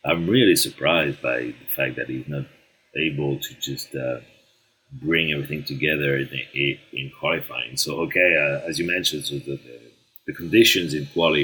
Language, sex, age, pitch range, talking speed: English, male, 30-49, 70-80 Hz, 165 wpm